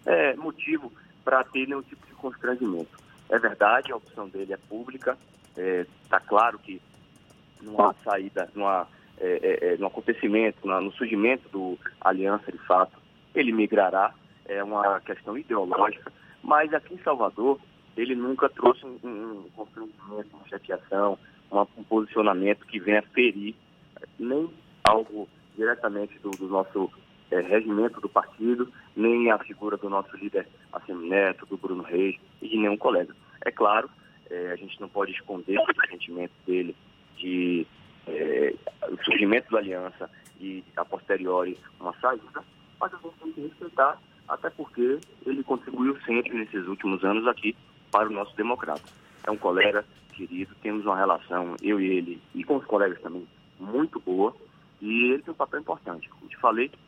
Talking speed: 160 wpm